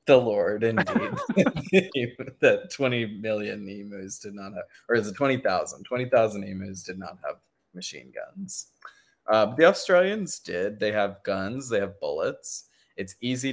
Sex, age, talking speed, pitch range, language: male, 20-39, 145 wpm, 100-135 Hz, English